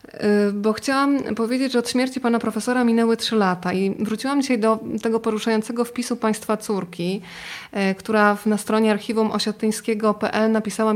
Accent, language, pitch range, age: native, Polish, 205-230 Hz, 20-39